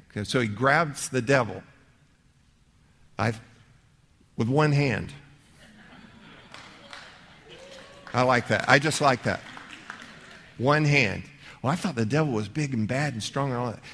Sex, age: male, 50-69